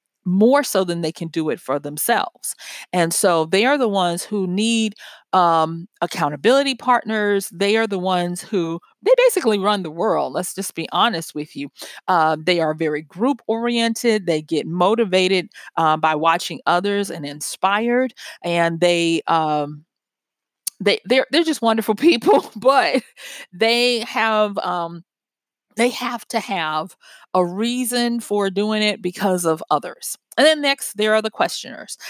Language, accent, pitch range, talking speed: English, American, 175-240 Hz, 155 wpm